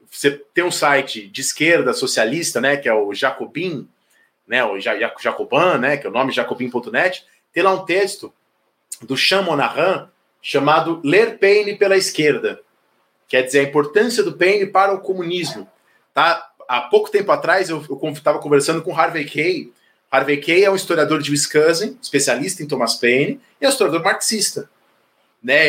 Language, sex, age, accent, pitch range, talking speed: Portuguese, male, 30-49, Brazilian, 145-210 Hz, 160 wpm